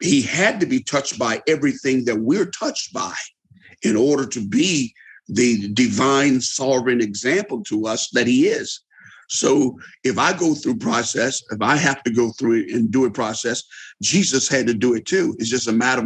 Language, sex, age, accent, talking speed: English, male, 50-69, American, 185 wpm